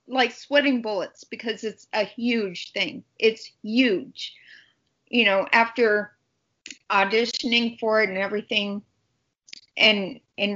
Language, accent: English, American